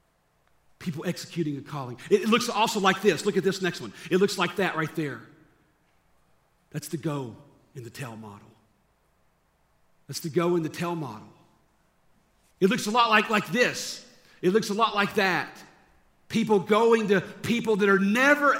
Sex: male